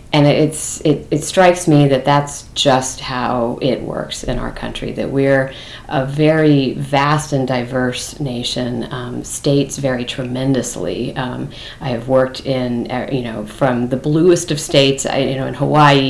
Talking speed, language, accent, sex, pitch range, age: 160 wpm, English, American, female, 125-145 Hz, 40-59